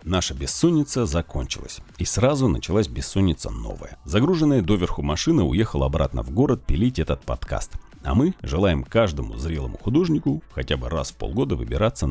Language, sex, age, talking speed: Russian, male, 40-59, 150 wpm